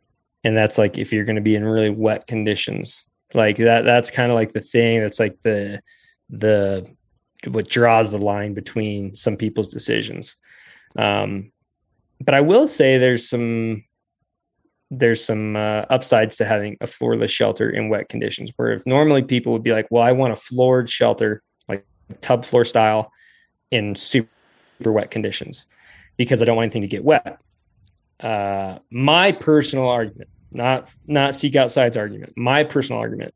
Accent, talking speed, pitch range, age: American, 165 wpm, 105-125 Hz, 20-39